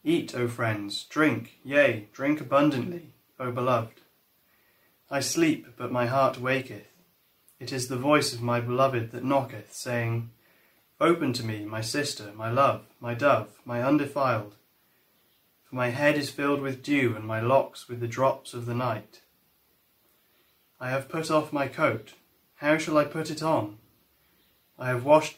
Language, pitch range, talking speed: English, 115-140 Hz, 160 wpm